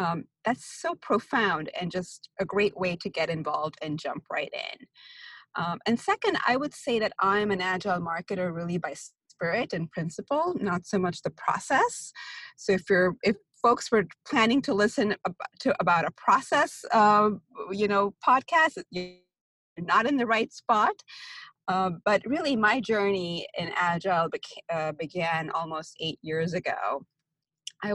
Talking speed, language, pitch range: 165 wpm, English, 165-215 Hz